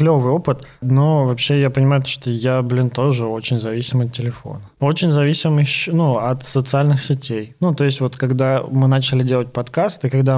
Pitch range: 120-140 Hz